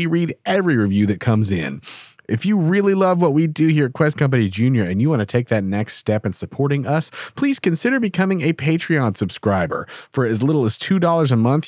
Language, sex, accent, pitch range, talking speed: English, male, American, 125-170 Hz, 220 wpm